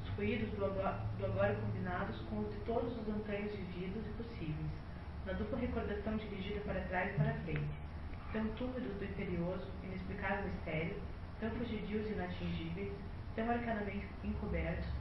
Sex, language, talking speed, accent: female, Portuguese, 145 wpm, Brazilian